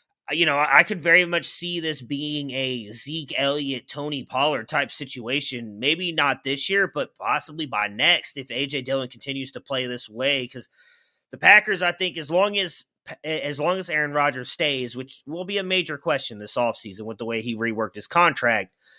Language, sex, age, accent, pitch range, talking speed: English, male, 30-49, American, 130-175 Hz, 185 wpm